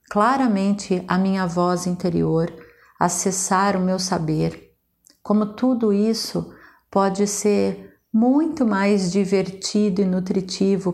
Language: Portuguese